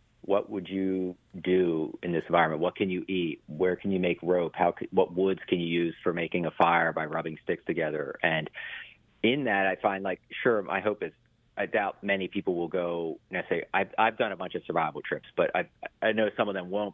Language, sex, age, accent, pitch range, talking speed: English, male, 40-59, American, 80-95 Hz, 225 wpm